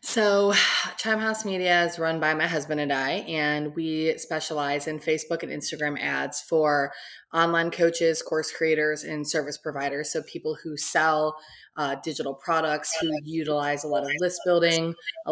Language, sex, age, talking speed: English, female, 20-39, 160 wpm